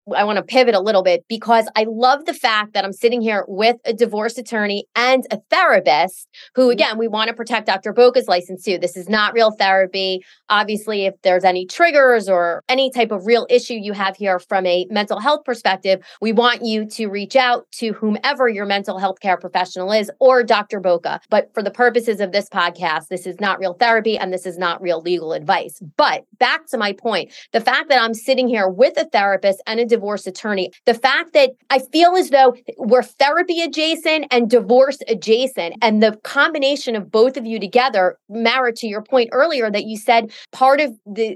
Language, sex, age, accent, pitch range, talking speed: English, female, 30-49, American, 195-260 Hz, 205 wpm